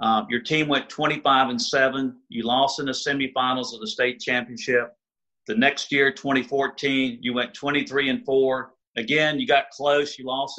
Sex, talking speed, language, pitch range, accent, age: male, 170 wpm, English, 125-165 Hz, American, 50-69